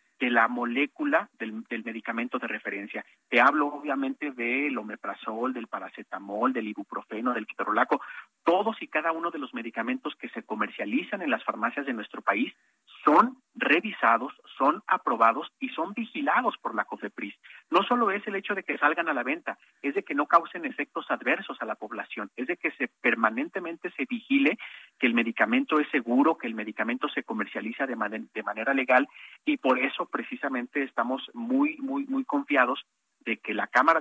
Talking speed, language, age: 180 wpm, Spanish, 40-59